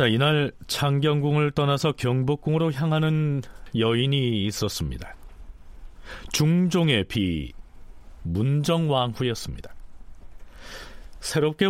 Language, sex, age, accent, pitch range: Korean, male, 40-59, native, 90-145 Hz